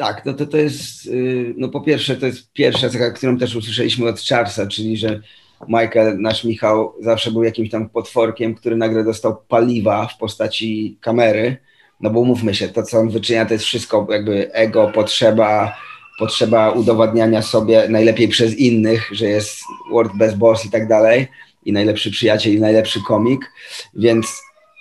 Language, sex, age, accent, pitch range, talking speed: Polish, male, 30-49, native, 110-135 Hz, 165 wpm